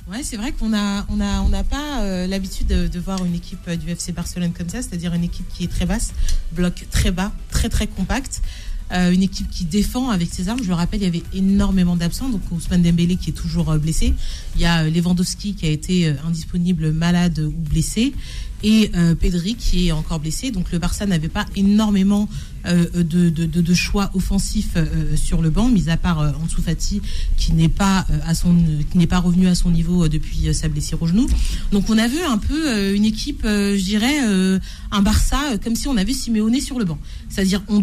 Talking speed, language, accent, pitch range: 225 wpm, French, French, 165-205 Hz